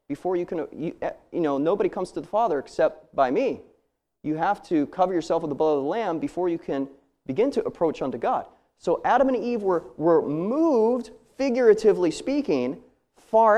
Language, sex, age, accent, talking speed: English, male, 30-49, American, 190 wpm